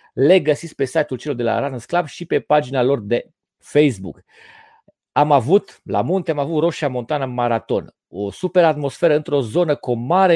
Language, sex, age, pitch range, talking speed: Romanian, male, 40-59, 125-170 Hz, 190 wpm